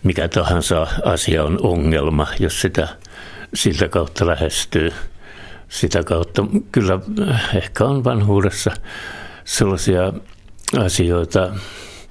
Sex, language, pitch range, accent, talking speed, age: male, Finnish, 80-105 Hz, native, 90 wpm, 60-79